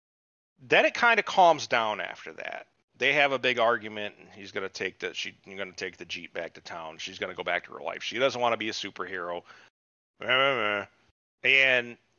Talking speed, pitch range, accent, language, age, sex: 210 wpm, 105-140 Hz, American, English, 40-59, male